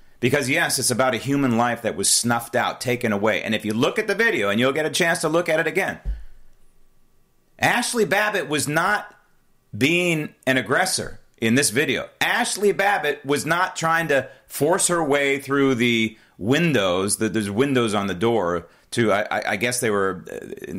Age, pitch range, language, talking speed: 40-59, 120-175 Hz, English, 190 wpm